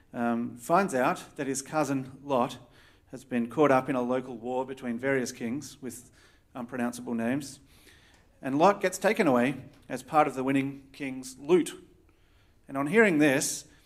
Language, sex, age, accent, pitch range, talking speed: English, male, 40-59, Australian, 120-150 Hz, 160 wpm